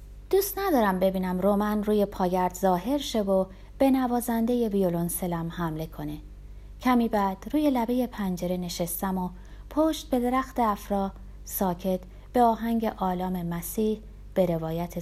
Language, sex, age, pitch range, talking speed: Persian, female, 30-49, 170-245 Hz, 130 wpm